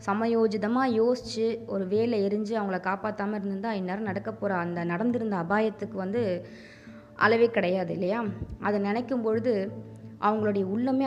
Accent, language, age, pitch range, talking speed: native, Tamil, 20-39, 180-225 Hz, 125 wpm